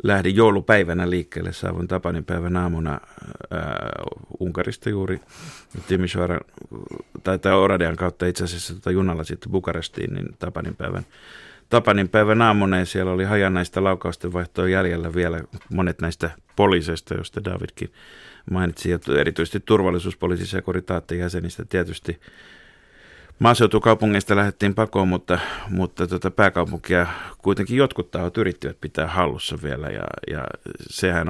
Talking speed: 115 wpm